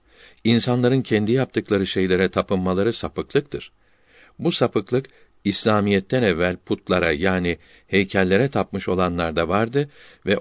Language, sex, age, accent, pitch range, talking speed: Turkish, male, 60-79, native, 95-120 Hz, 100 wpm